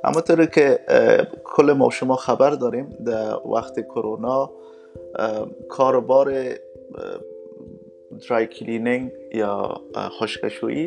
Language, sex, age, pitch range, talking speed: Persian, male, 30-49, 105-130 Hz, 95 wpm